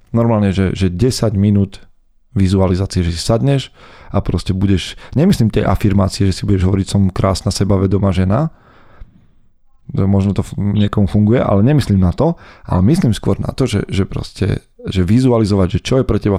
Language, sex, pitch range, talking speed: Slovak, male, 95-115 Hz, 170 wpm